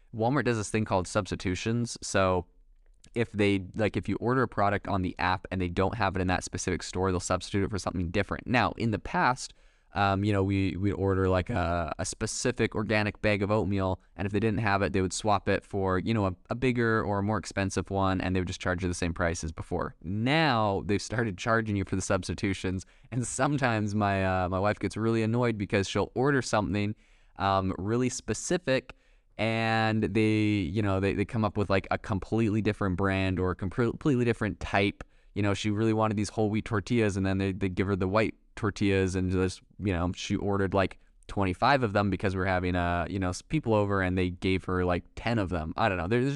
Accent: American